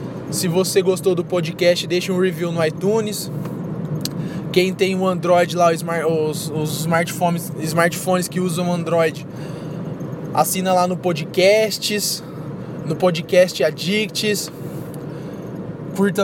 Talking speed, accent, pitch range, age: 110 wpm, Brazilian, 160-185 Hz, 20-39